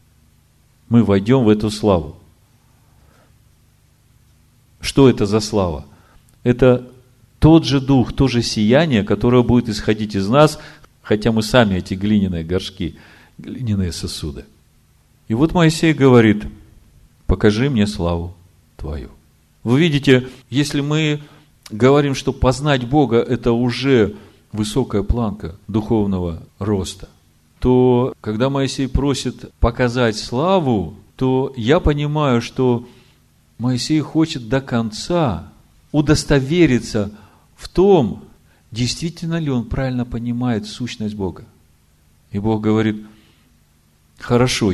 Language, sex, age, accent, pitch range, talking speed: Russian, male, 40-59, native, 95-130 Hz, 105 wpm